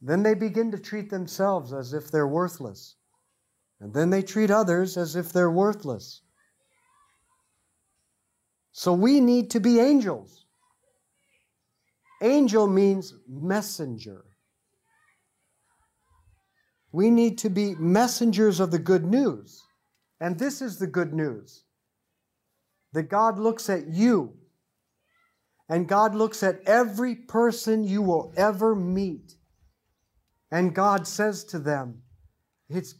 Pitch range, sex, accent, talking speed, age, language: 135-210 Hz, male, American, 115 wpm, 50-69, English